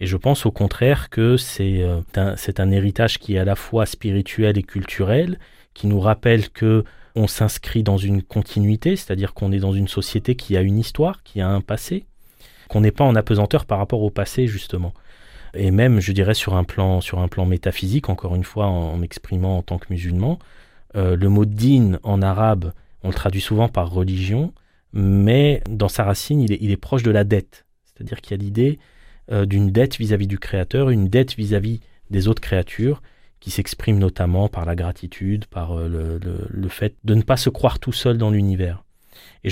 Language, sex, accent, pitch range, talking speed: French, male, French, 95-115 Hz, 205 wpm